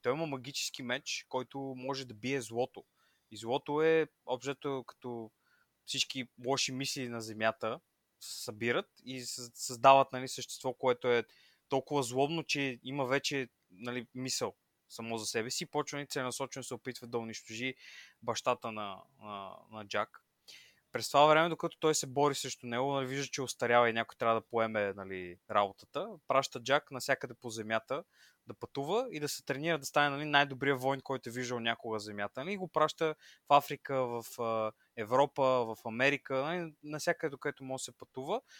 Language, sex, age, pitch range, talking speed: Bulgarian, male, 20-39, 120-140 Hz, 170 wpm